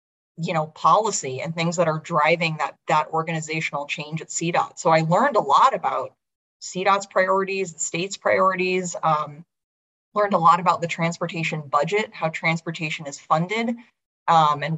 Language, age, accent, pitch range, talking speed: English, 30-49, American, 155-185 Hz, 160 wpm